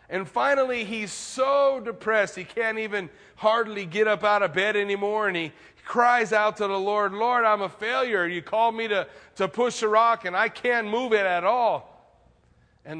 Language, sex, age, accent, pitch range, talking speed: English, male, 40-59, American, 135-230 Hz, 195 wpm